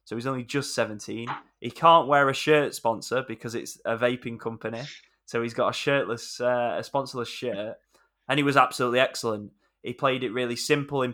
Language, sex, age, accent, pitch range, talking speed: English, male, 10-29, British, 110-125 Hz, 195 wpm